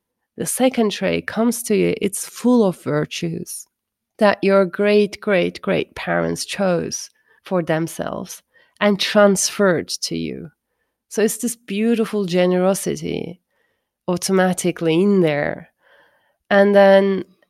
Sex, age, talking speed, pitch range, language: female, 30-49, 115 wpm, 180-210 Hz, English